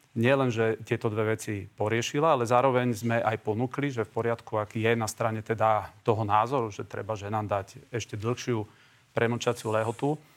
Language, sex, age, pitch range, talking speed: Slovak, male, 40-59, 110-125 Hz, 175 wpm